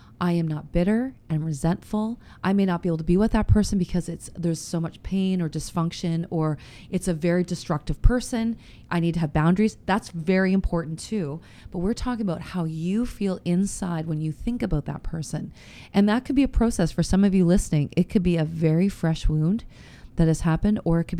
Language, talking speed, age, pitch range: English, 220 wpm, 30-49, 160-180 Hz